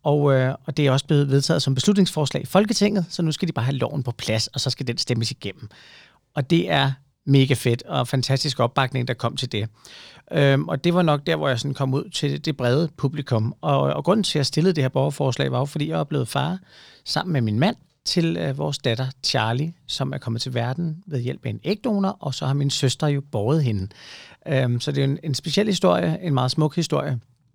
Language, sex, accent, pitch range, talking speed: Danish, male, native, 130-165 Hz, 240 wpm